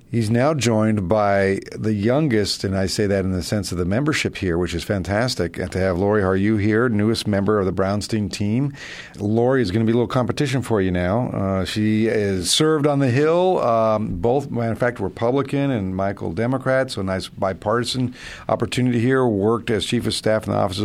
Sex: male